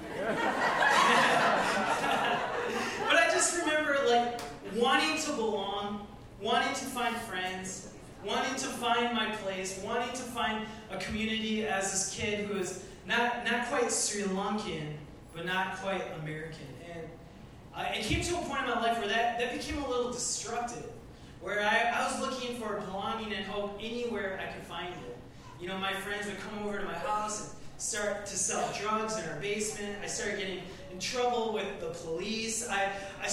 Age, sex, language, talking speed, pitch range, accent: 20-39, male, English, 175 wpm, 175-225 Hz, American